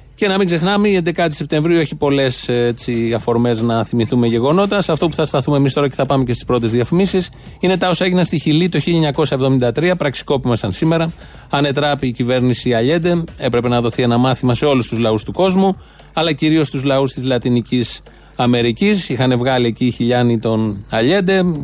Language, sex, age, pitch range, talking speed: Greek, male, 30-49, 120-150 Hz, 180 wpm